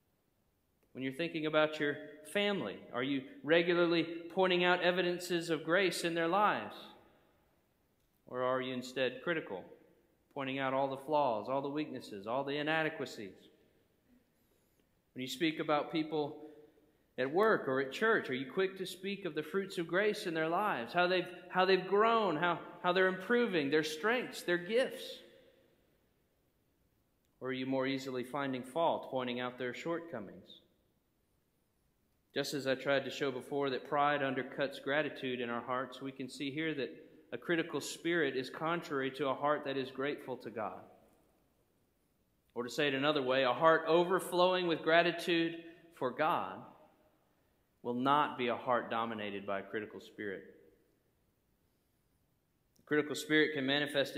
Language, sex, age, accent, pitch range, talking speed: English, male, 40-59, American, 135-170 Hz, 155 wpm